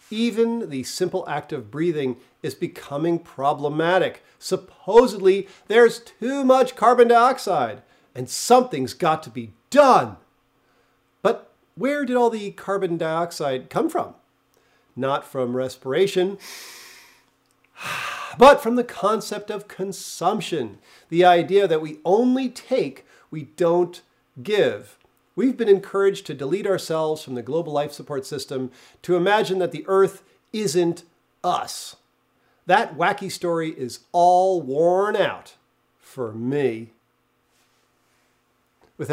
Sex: male